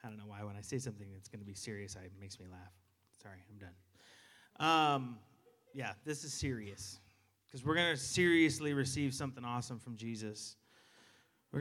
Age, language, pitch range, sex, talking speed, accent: 30-49, English, 130-170 Hz, male, 190 wpm, American